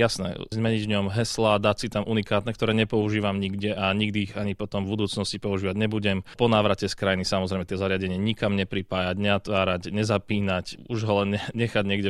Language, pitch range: Slovak, 95-105 Hz